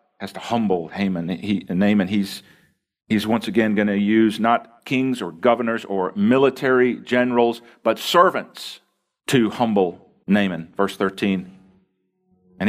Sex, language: male, English